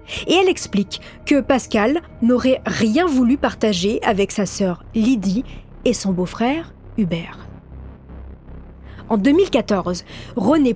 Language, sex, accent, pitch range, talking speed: French, female, French, 190-255 Hz, 110 wpm